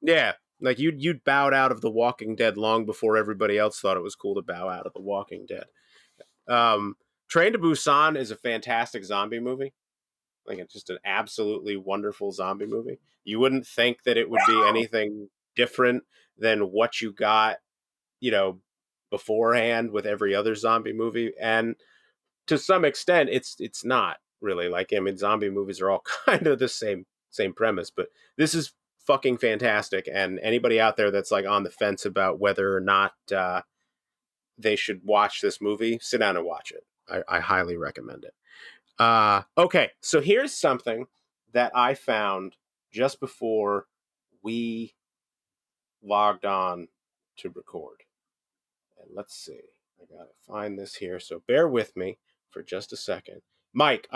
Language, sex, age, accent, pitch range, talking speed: English, male, 30-49, American, 105-135 Hz, 165 wpm